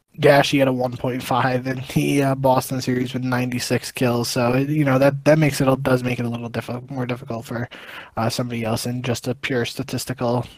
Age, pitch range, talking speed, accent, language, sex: 20-39, 125-140 Hz, 210 wpm, American, English, male